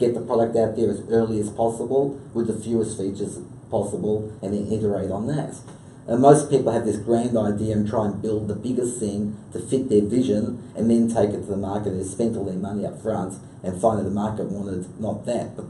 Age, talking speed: 30-49, 230 wpm